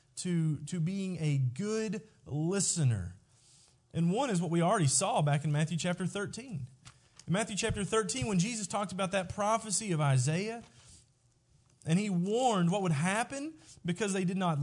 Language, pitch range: English, 135-195 Hz